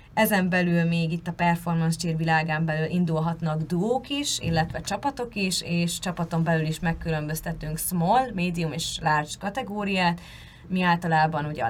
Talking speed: 150 wpm